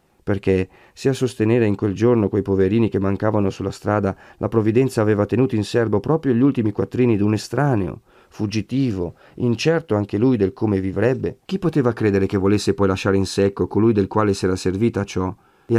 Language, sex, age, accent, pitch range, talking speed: Italian, male, 40-59, native, 95-125 Hz, 190 wpm